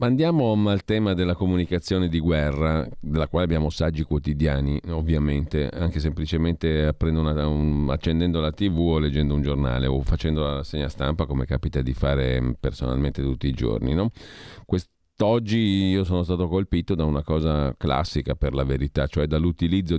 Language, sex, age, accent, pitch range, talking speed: Italian, male, 40-59, native, 75-90 Hz, 160 wpm